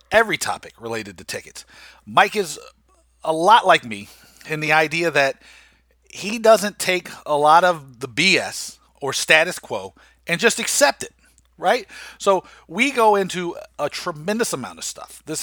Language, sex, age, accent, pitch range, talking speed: English, male, 40-59, American, 125-160 Hz, 160 wpm